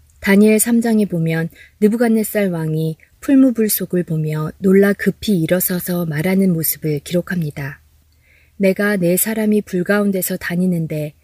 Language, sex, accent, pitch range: Korean, female, native, 160-210 Hz